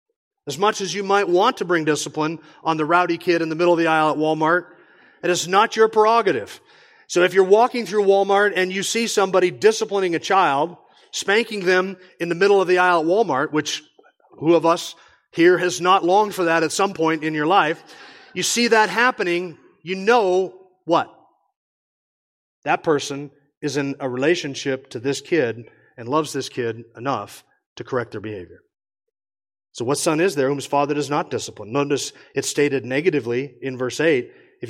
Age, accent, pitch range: 40-59, American, 140-180 Hz